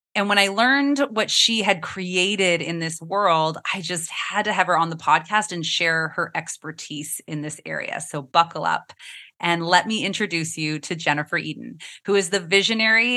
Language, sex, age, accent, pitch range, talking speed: English, female, 30-49, American, 165-210 Hz, 190 wpm